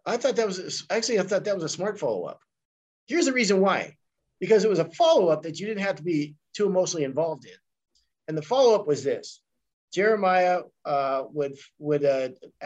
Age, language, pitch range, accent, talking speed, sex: 50-69, English, 145-185 Hz, American, 210 wpm, male